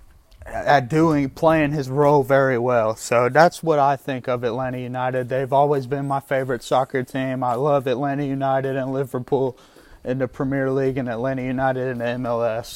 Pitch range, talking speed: 135-155 Hz, 180 wpm